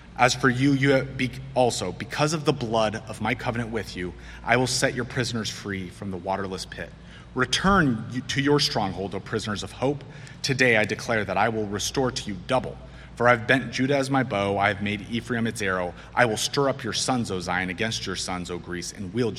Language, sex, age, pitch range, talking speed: English, male, 30-49, 110-135 Hz, 220 wpm